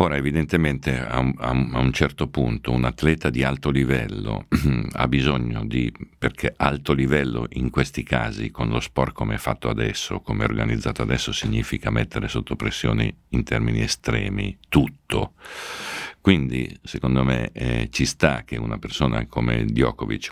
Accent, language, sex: native, Italian, male